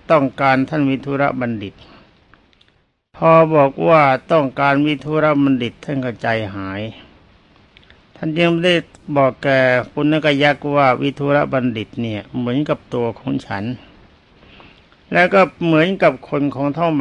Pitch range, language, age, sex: 115-150 Hz, Thai, 60-79, male